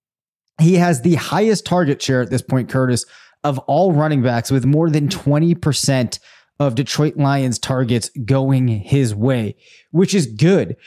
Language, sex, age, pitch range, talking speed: English, male, 20-39, 125-155 Hz, 155 wpm